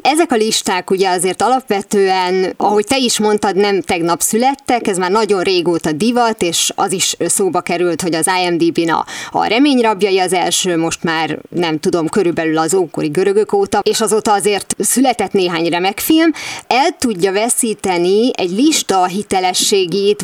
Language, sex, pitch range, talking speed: Hungarian, female, 190-270 Hz, 155 wpm